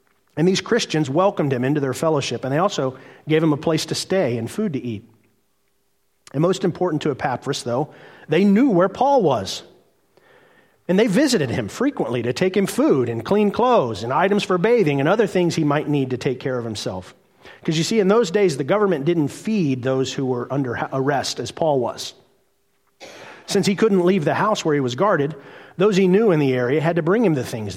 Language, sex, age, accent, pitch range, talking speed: English, male, 40-59, American, 125-185 Hz, 215 wpm